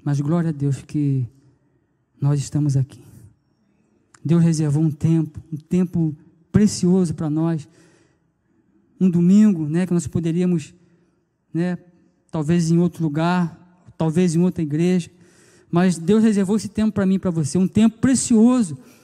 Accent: Brazilian